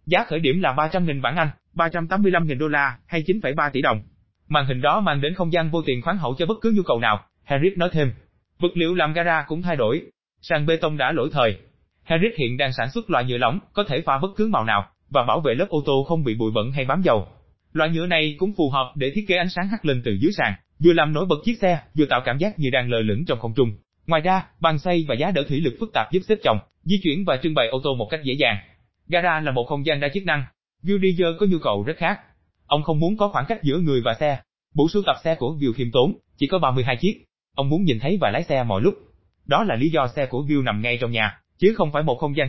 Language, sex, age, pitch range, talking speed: Vietnamese, male, 20-39, 125-175 Hz, 290 wpm